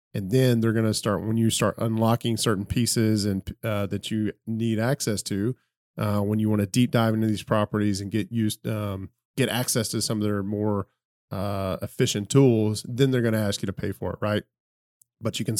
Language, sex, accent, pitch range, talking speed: English, male, American, 100-120 Hz, 220 wpm